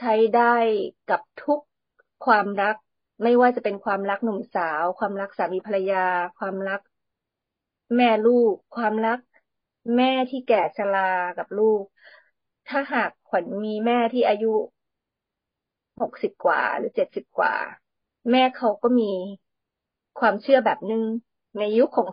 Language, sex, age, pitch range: Thai, female, 20-39, 200-250 Hz